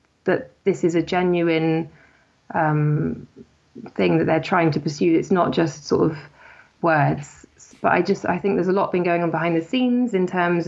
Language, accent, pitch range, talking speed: English, British, 155-175 Hz, 190 wpm